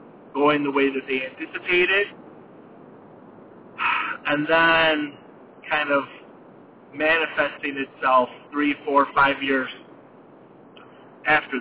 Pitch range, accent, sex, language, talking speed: 135-180 Hz, American, male, English, 90 wpm